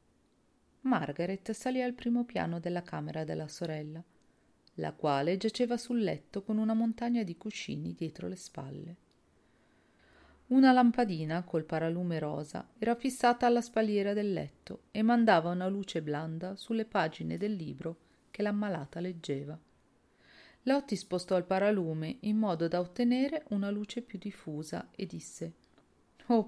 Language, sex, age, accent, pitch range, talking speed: Italian, female, 40-59, native, 165-225 Hz, 135 wpm